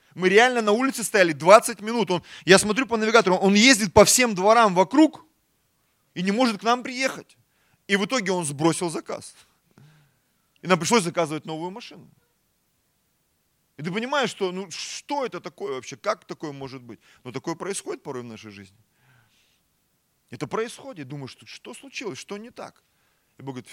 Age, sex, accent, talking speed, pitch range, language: 30-49, male, native, 165 wpm, 165-235 Hz, Russian